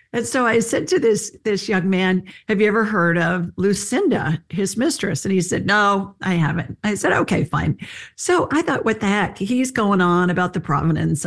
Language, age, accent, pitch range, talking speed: English, 50-69, American, 165-210 Hz, 210 wpm